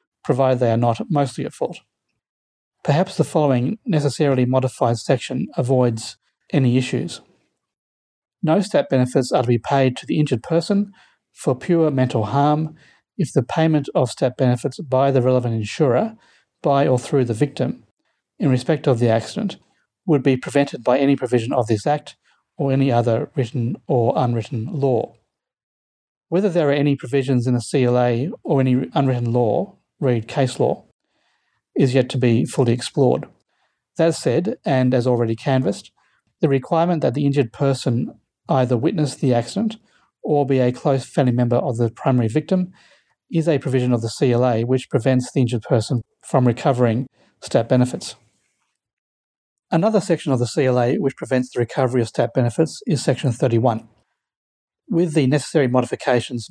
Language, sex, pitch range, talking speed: English, male, 125-145 Hz, 155 wpm